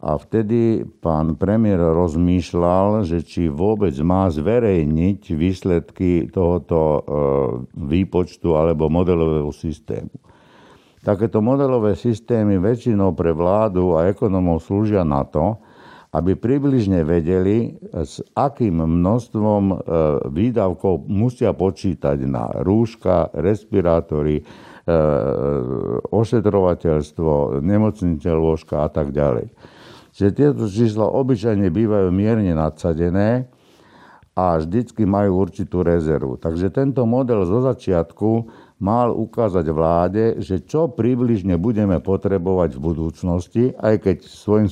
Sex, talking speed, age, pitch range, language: male, 100 wpm, 60-79, 85-110 Hz, Slovak